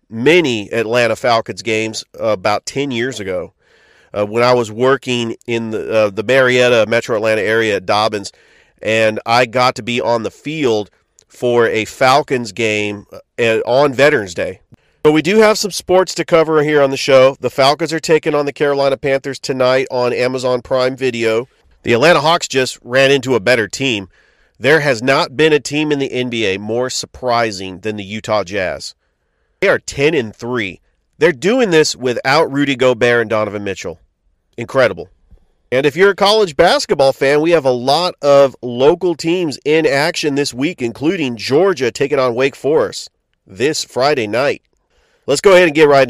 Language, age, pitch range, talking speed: English, 40-59, 120-150 Hz, 175 wpm